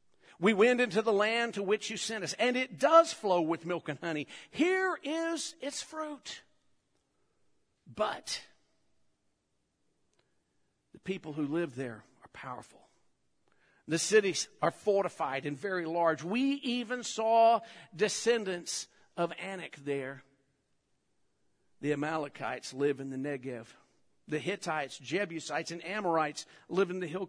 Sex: male